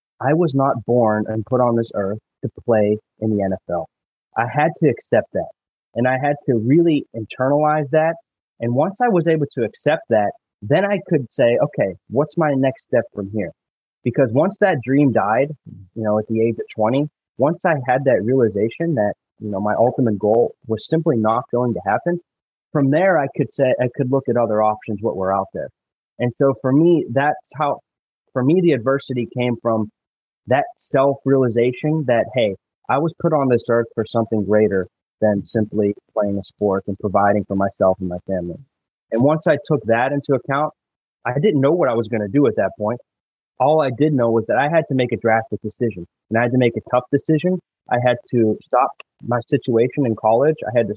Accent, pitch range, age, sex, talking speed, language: American, 110-145 Hz, 30-49, male, 210 wpm, English